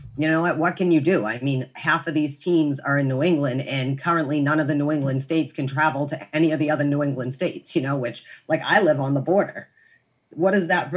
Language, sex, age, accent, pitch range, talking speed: English, female, 40-59, American, 140-170 Hz, 265 wpm